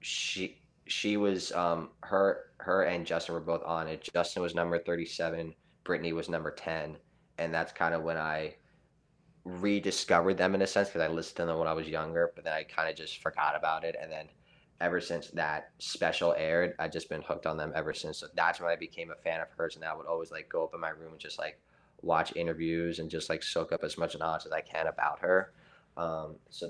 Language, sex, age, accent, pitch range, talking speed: English, male, 20-39, American, 80-90 Hz, 235 wpm